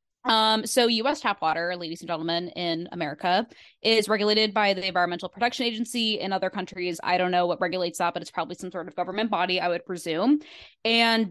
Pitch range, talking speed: 175-220 Hz, 205 wpm